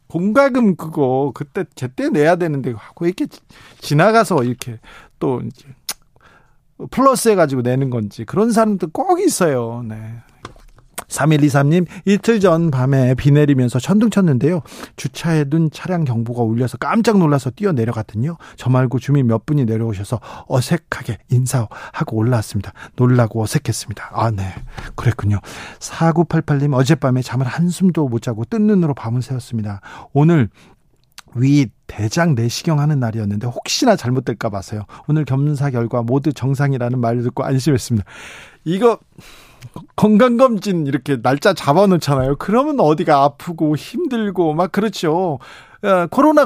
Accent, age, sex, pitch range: native, 40-59, male, 125-180 Hz